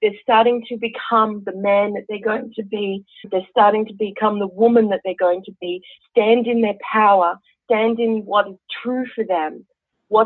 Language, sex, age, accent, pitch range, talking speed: English, female, 40-59, Australian, 195-230 Hz, 200 wpm